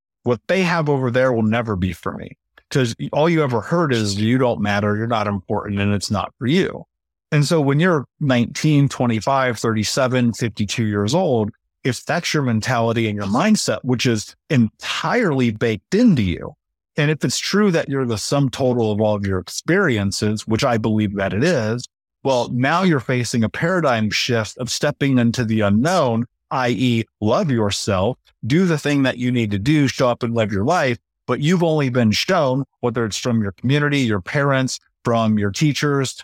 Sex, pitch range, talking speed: male, 110-145 Hz, 190 wpm